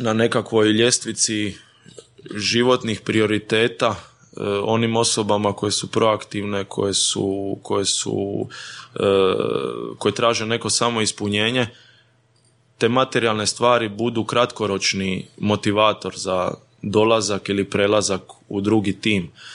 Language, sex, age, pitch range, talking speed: Croatian, male, 20-39, 105-120 Hz, 100 wpm